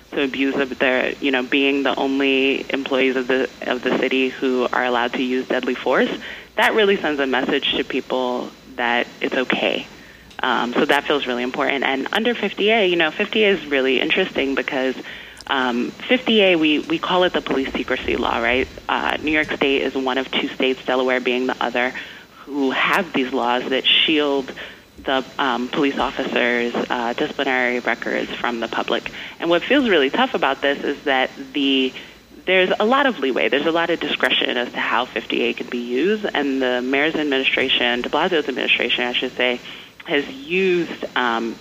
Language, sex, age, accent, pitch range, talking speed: English, female, 20-39, American, 125-165 Hz, 185 wpm